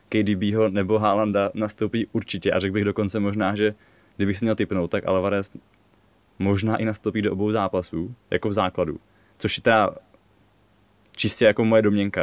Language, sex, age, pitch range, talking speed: Czech, male, 20-39, 95-110 Hz, 160 wpm